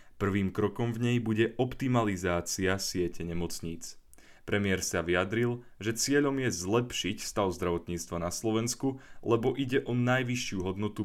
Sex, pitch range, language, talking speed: male, 90-120 Hz, Slovak, 130 wpm